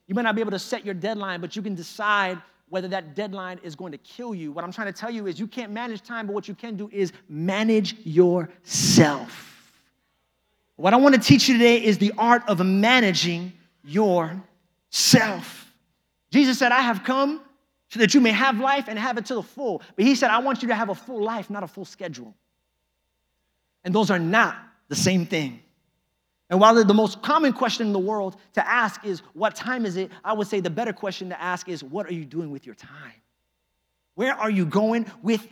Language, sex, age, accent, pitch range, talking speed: English, male, 30-49, American, 170-225 Hz, 220 wpm